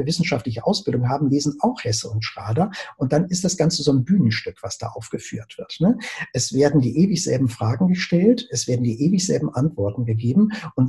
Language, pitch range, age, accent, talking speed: German, 120-155 Hz, 50-69, German, 185 wpm